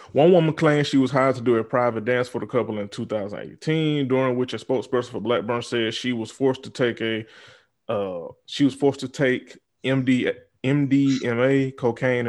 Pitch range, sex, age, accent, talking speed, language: 115-130 Hz, male, 20-39, American, 185 wpm, English